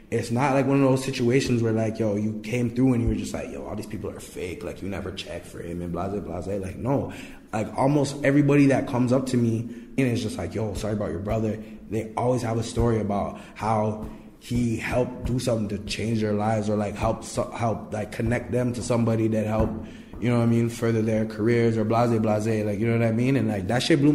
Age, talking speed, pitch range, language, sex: 20-39, 250 wpm, 110-130 Hz, English, male